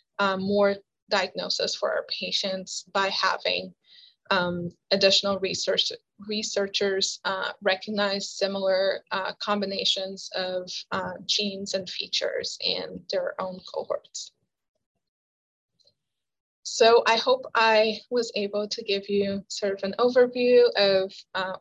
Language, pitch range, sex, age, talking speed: English, 195-230 Hz, female, 20-39, 110 wpm